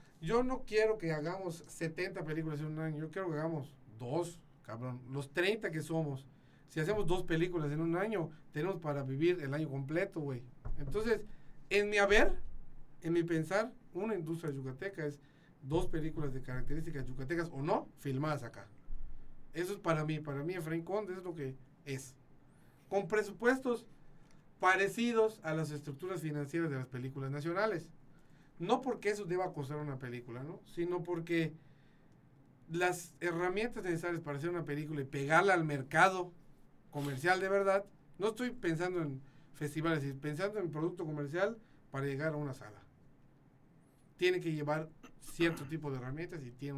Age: 40-59